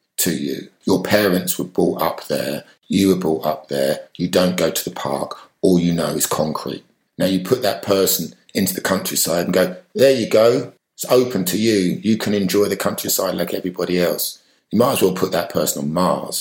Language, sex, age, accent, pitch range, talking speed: English, male, 50-69, British, 90-105 Hz, 210 wpm